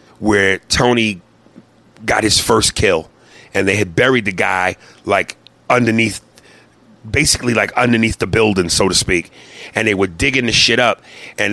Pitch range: 100-125 Hz